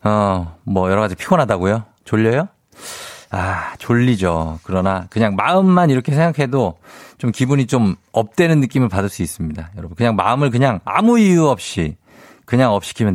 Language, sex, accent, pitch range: Korean, male, native, 95-145 Hz